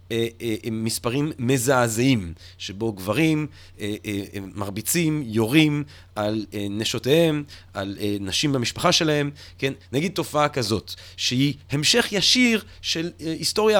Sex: male